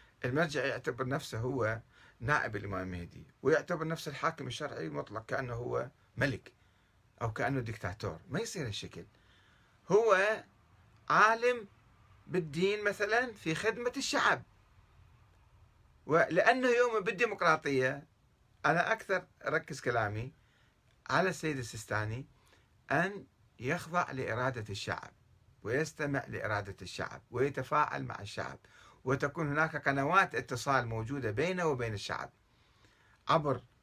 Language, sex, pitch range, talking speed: Arabic, male, 110-165 Hz, 100 wpm